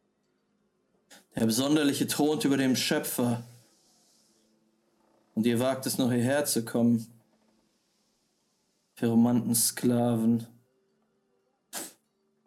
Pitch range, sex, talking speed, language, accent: 110-155 Hz, male, 70 wpm, German, German